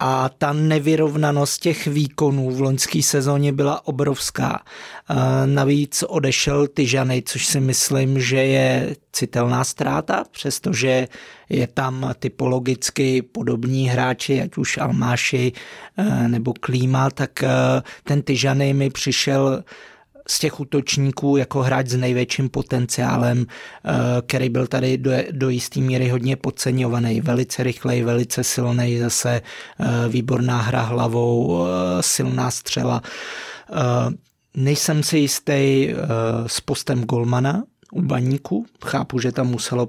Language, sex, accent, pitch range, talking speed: Czech, male, native, 125-140 Hz, 110 wpm